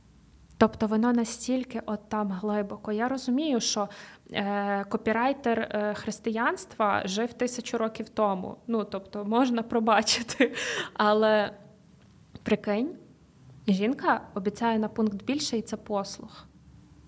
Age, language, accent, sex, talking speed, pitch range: 20-39, Ukrainian, native, female, 100 wpm, 205-235 Hz